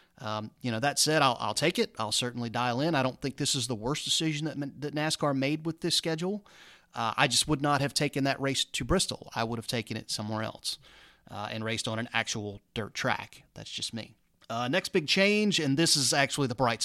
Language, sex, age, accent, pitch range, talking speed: English, male, 30-49, American, 115-145 Hz, 240 wpm